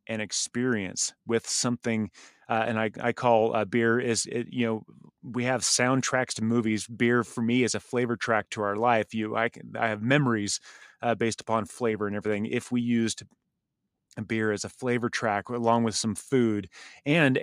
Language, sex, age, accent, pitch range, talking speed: English, male, 30-49, American, 105-120 Hz, 195 wpm